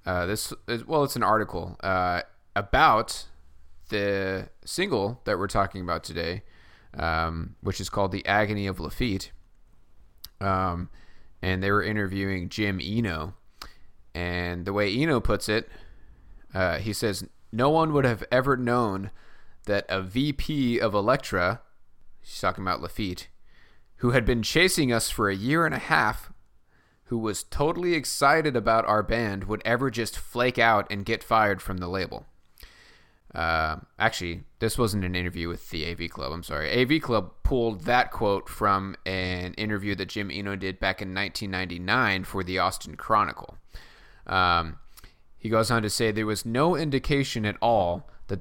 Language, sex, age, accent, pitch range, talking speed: English, male, 20-39, American, 90-115 Hz, 160 wpm